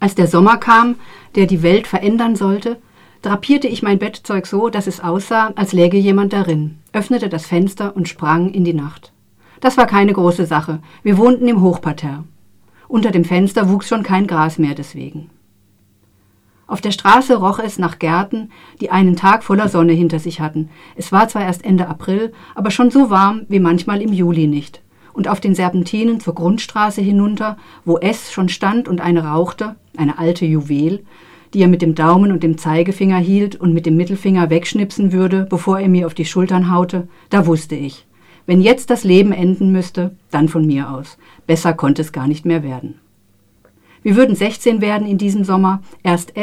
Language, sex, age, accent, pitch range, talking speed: German, female, 50-69, German, 165-205 Hz, 185 wpm